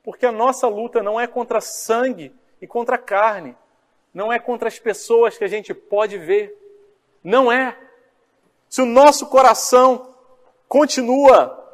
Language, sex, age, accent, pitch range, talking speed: Portuguese, male, 40-59, Brazilian, 230-280 Hz, 145 wpm